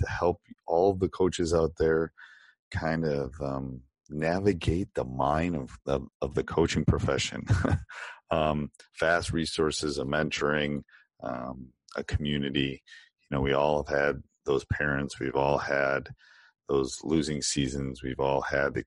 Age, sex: 40-59, male